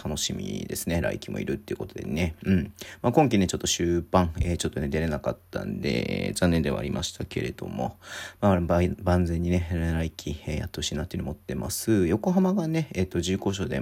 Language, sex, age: Japanese, male, 40-59